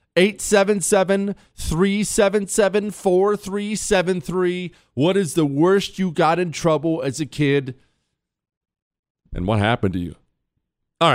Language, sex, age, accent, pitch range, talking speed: English, male, 40-59, American, 120-195 Hz, 95 wpm